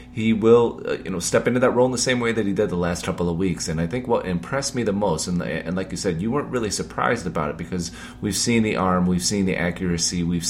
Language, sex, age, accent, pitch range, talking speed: English, male, 30-49, American, 80-95 Hz, 290 wpm